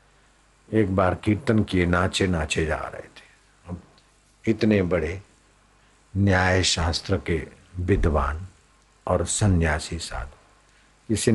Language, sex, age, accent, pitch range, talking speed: Hindi, male, 60-79, native, 85-100 Hz, 105 wpm